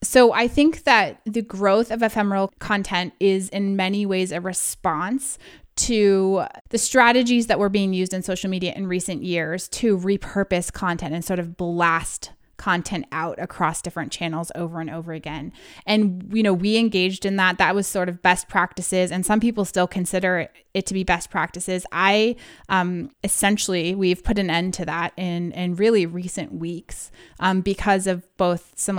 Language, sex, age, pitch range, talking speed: English, female, 20-39, 180-215 Hz, 180 wpm